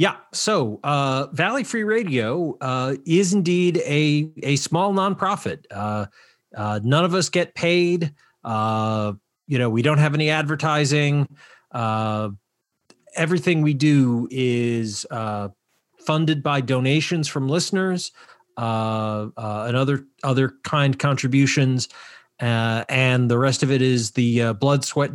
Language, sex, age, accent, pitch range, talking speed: English, male, 40-59, American, 115-155 Hz, 135 wpm